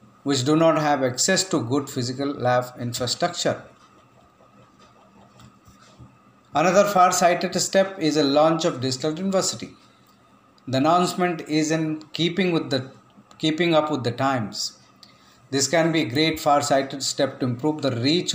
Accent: Indian